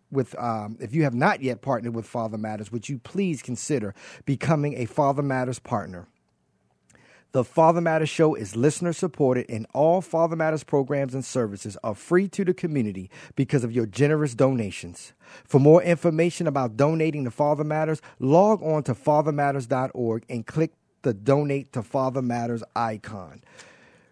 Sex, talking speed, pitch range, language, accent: male, 160 wpm, 120-155 Hz, English, American